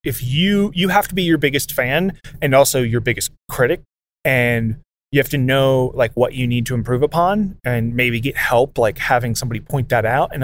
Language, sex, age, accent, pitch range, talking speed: English, male, 30-49, American, 115-145 Hz, 215 wpm